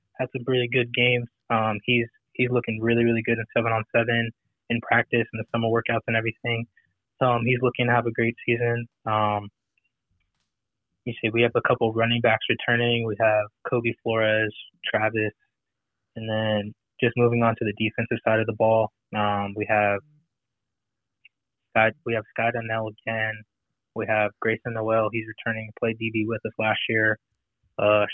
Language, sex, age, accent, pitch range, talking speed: English, male, 20-39, American, 110-120 Hz, 175 wpm